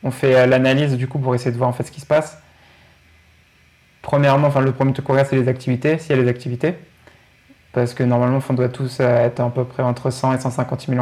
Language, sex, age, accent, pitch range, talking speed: French, male, 20-39, French, 125-145 Hz, 245 wpm